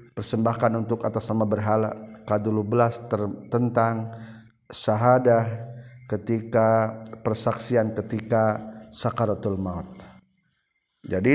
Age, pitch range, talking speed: 50-69, 110-125 Hz, 85 wpm